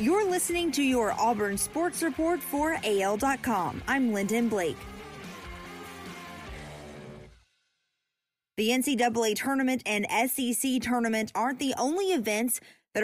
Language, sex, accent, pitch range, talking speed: English, female, American, 205-245 Hz, 105 wpm